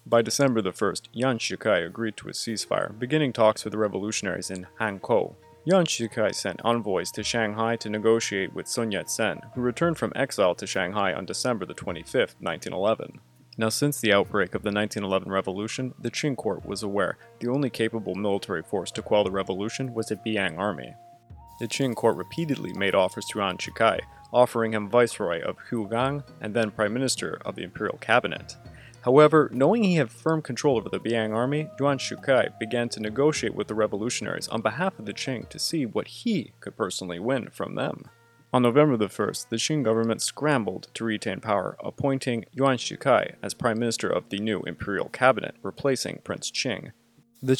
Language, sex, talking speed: English, male, 185 wpm